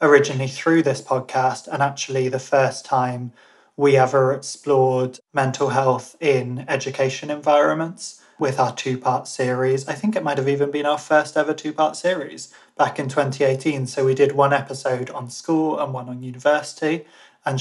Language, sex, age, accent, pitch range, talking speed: English, male, 20-39, British, 130-150 Hz, 165 wpm